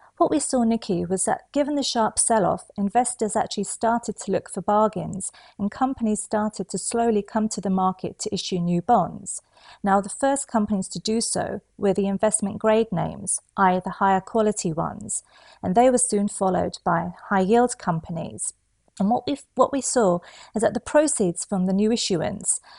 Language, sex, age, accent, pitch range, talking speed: English, female, 40-59, British, 185-235 Hz, 180 wpm